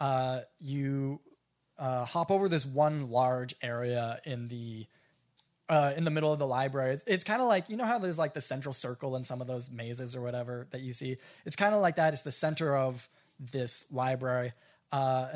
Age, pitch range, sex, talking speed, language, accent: 20-39, 125-150 Hz, male, 220 wpm, English, American